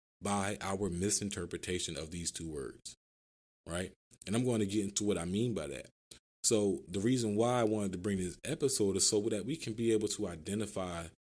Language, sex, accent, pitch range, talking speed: English, male, American, 80-105 Hz, 205 wpm